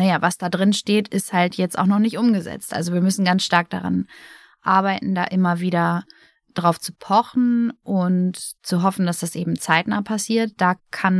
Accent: German